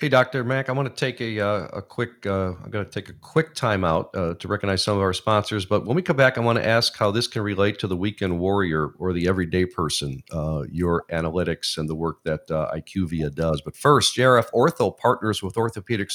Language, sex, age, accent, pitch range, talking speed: English, male, 50-69, American, 95-135 Hz, 240 wpm